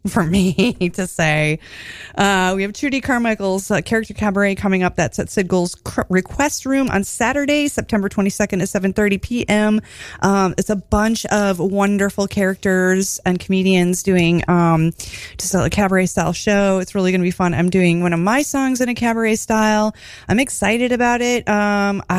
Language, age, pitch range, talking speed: English, 30-49, 180-230 Hz, 175 wpm